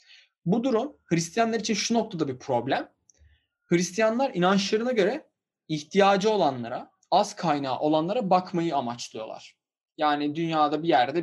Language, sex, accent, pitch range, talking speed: Turkish, male, native, 140-205 Hz, 120 wpm